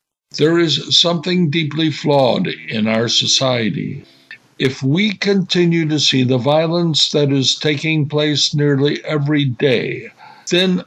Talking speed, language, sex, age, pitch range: 125 wpm, English, male, 60-79, 125-155 Hz